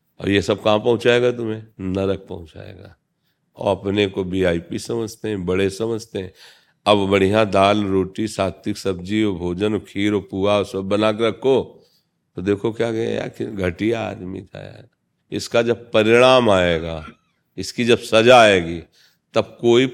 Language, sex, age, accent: Hindi, male, 40-59, native